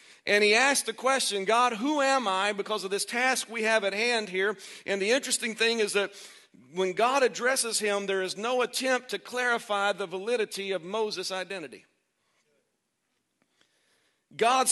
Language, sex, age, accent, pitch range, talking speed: English, male, 50-69, American, 195-250 Hz, 165 wpm